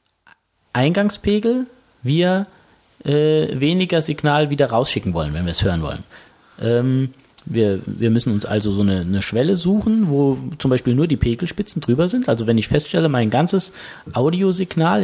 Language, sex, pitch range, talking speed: German, male, 115-165 Hz, 155 wpm